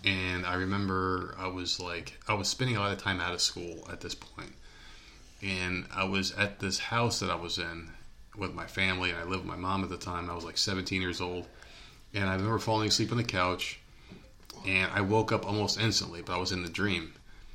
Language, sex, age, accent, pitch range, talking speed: English, male, 30-49, American, 90-105 Hz, 230 wpm